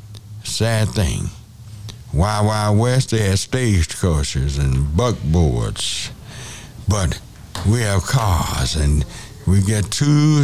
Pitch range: 95-120 Hz